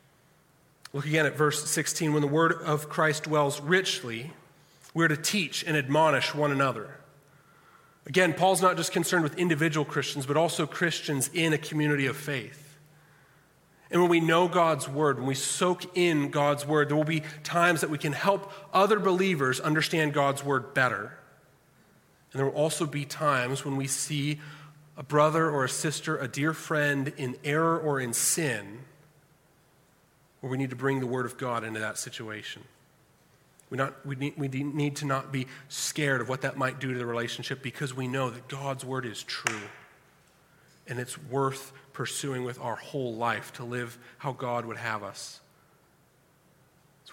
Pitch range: 130-155 Hz